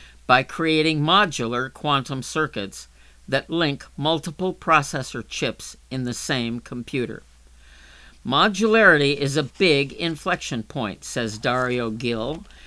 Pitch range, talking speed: 115-160 Hz, 110 wpm